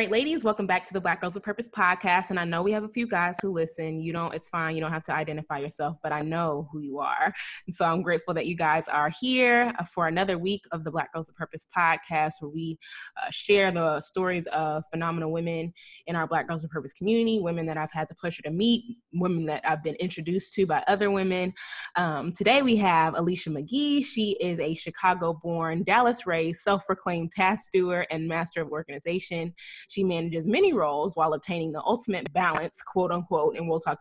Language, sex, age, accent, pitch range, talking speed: English, female, 20-39, American, 160-195 Hz, 215 wpm